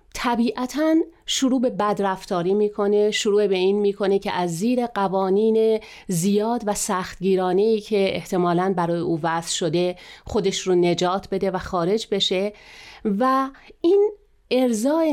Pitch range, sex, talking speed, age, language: 185-245 Hz, female, 130 wpm, 40-59, Persian